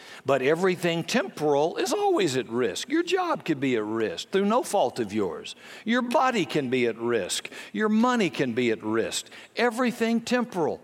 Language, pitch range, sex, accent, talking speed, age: English, 155-225 Hz, male, American, 175 wpm, 60-79